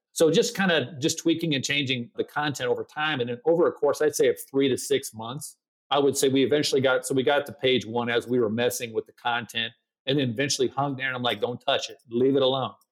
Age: 40-59